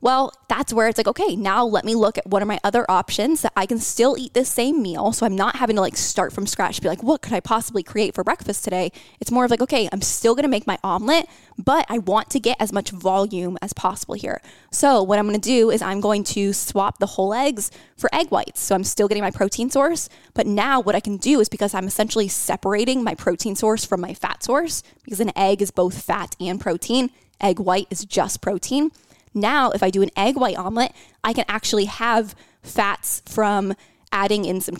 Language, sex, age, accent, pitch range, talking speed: English, female, 10-29, American, 195-230 Hz, 235 wpm